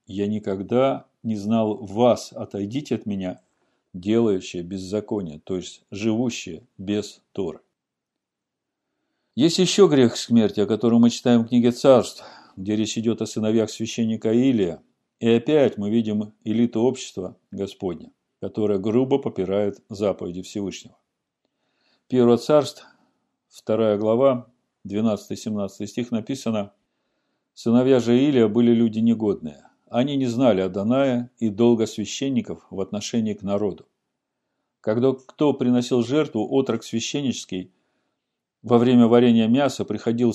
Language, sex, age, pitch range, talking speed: Russian, male, 50-69, 105-125 Hz, 120 wpm